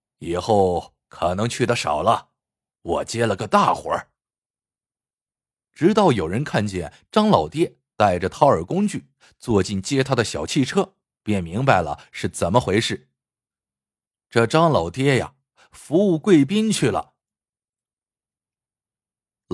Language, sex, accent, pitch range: Chinese, male, native, 105-170 Hz